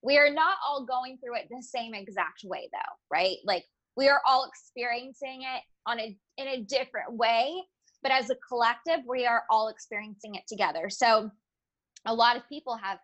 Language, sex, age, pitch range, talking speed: English, female, 20-39, 220-275 Hz, 190 wpm